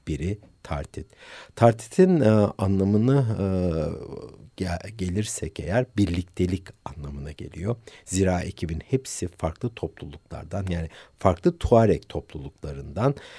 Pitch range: 80-100 Hz